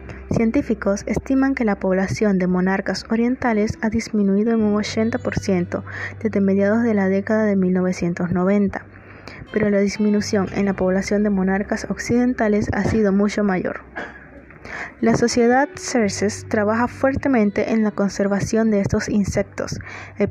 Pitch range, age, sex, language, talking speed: 190-225 Hz, 20-39, female, English, 135 wpm